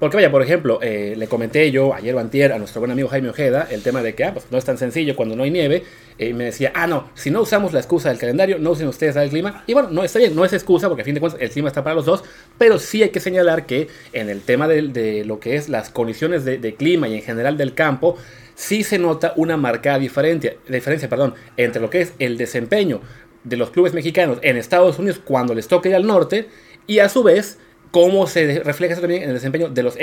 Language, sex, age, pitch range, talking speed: Spanish, male, 30-49, 125-170 Hz, 265 wpm